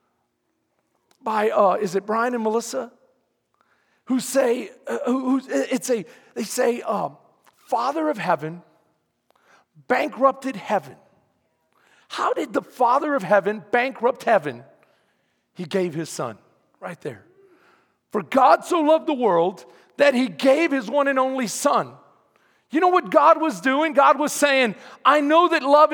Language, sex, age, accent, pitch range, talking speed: English, male, 40-59, American, 245-305 Hz, 145 wpm